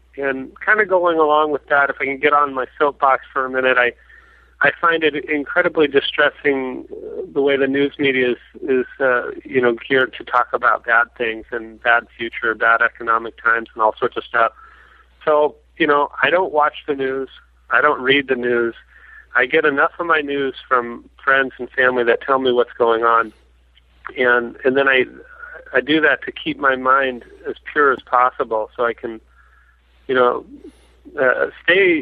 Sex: male